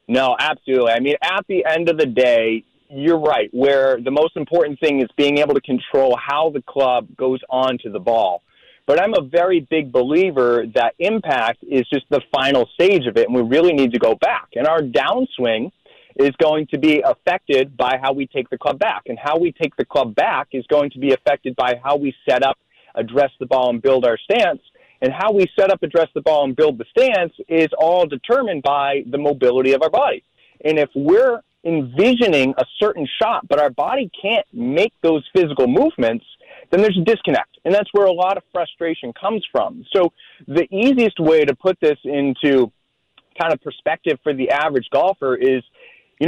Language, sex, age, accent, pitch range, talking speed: English, male, 30-49, American, 135-180 Hz, 205 wpm